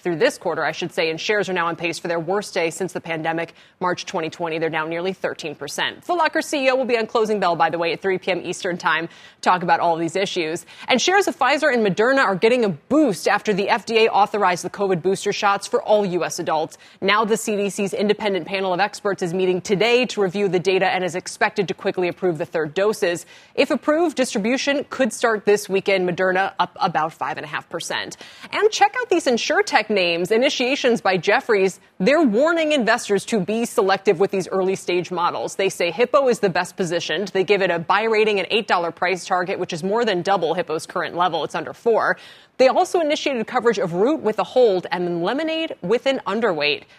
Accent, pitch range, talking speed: American, 180-230 Hz, 210 wpm